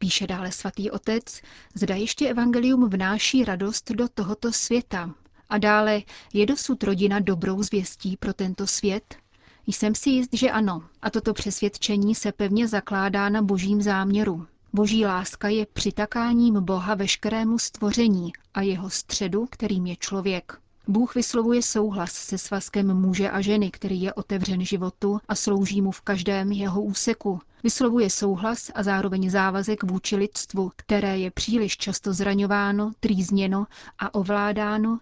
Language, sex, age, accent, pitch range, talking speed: Czech, female, 30-49, native, 195-215 Hz, 140 wpm